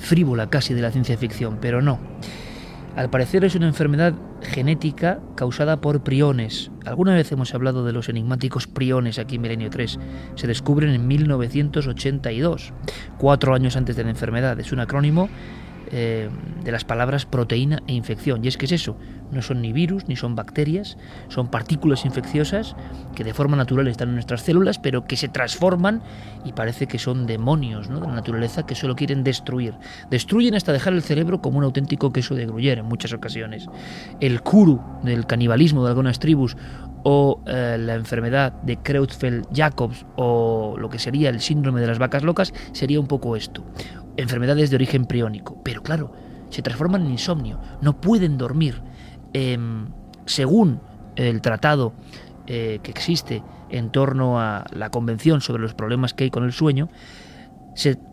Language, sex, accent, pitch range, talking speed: Spanish, male, Spanish, 120-150 Hz, 170 wpm